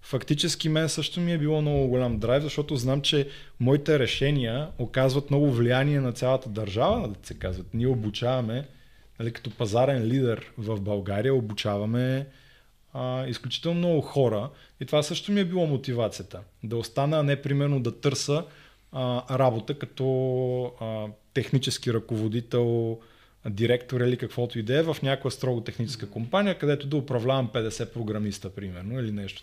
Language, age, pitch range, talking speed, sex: Bulgarian, 20-39, 115-150 Hz, 135 wpm, male